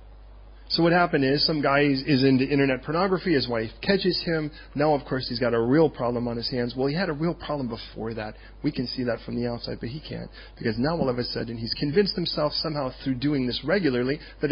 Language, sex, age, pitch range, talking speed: English, male, 40-59, 125-170 Hz, 240 wpm